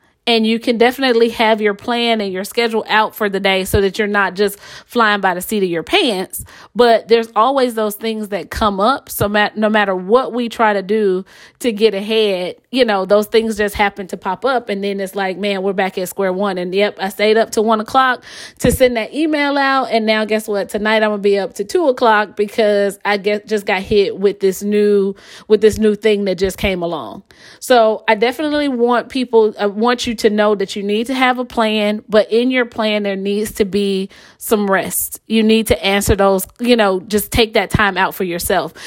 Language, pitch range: English, 200-235 Hz